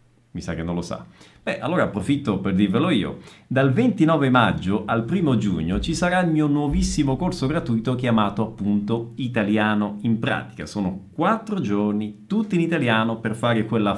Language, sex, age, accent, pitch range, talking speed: Italian, male, 40-59, native, 110-155 Hz, 165 wpm